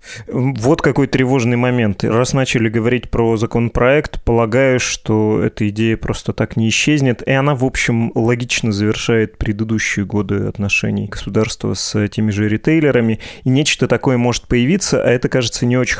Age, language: 20-39, Russian